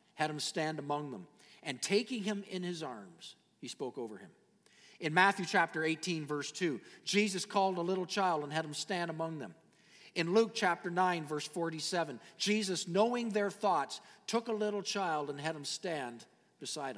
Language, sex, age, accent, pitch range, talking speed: English, male, 50-69, American, 160-225 Hz, 180 wpm